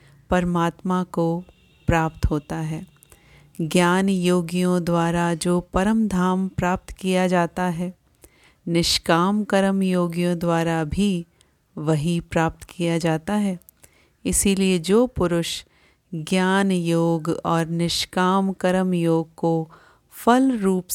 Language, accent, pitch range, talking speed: Hindi, native, 160-185 Hz, 105 wpm